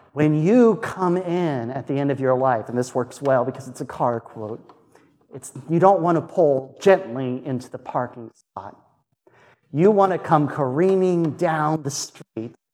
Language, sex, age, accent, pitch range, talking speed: English, male, 40-59, American, 120-160 Hz, 180 wpm